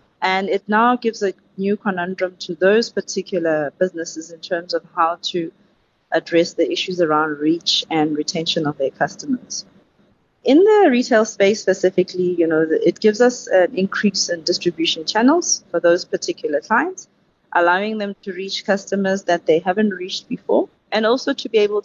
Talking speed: 165 wpm